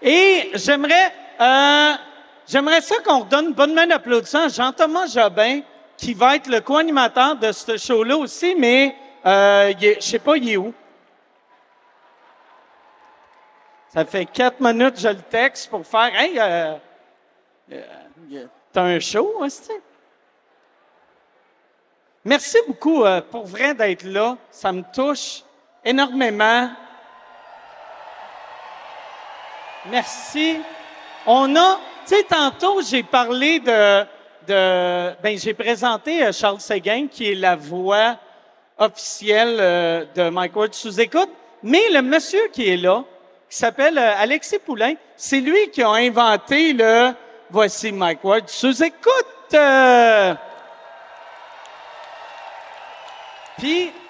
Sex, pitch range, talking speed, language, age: male, 215-310 Hz, 120 wpm, French, 50-69